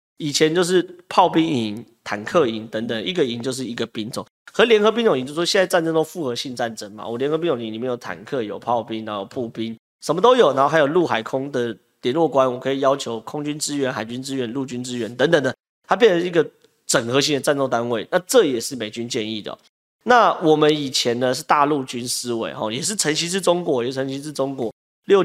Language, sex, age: Chinese, male, 30-49